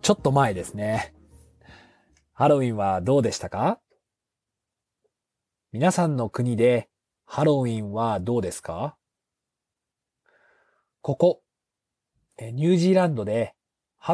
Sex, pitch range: male, 110-150 Hz